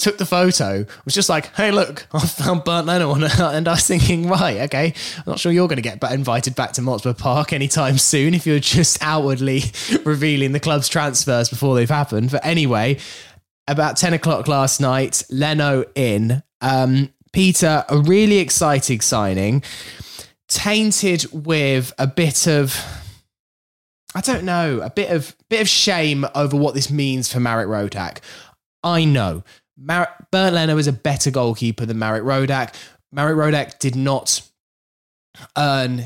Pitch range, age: 115-155 Hz, 10-29